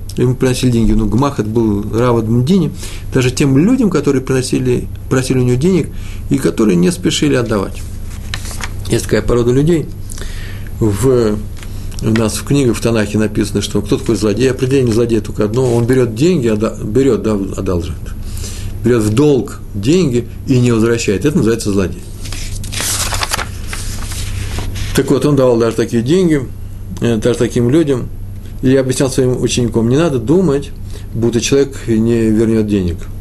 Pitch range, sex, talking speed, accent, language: 100-130 Hz, male, 145 wpm, native, Russian